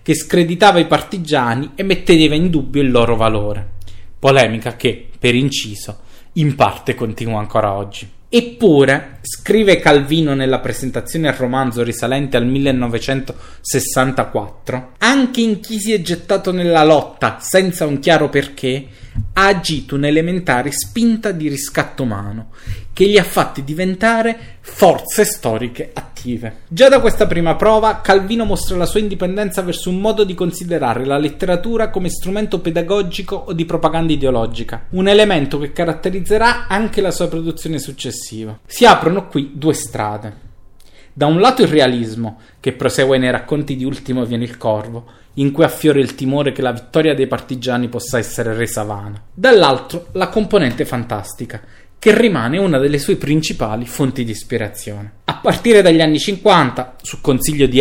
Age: 20-39